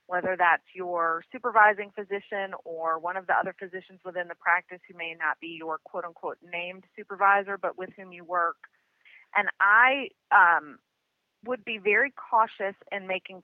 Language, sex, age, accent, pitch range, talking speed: English, female, 30-49, American, 175-220 Hz, 160 wpm